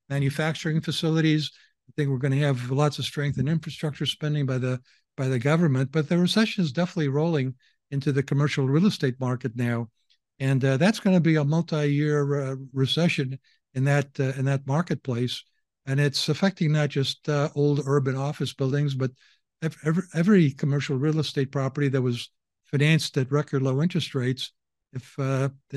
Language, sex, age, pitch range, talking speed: English, male, 60-79, 130-150 Hz, 175 wpm